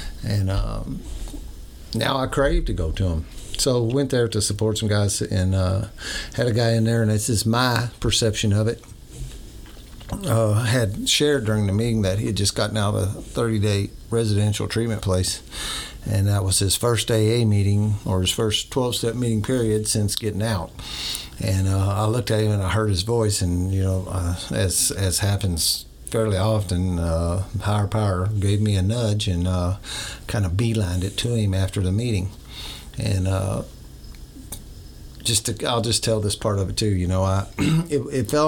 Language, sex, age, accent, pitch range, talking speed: English, male, 50-69, American, 95-115 Hz, 190 wpm